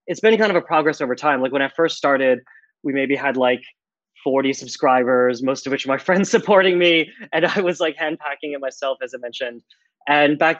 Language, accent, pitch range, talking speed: English, American, 125-155 Hz, 220 wpm